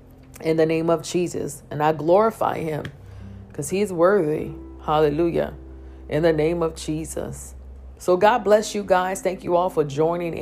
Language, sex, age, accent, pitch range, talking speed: English, female, 50-69, American, 150-180 Hz, 165 wpm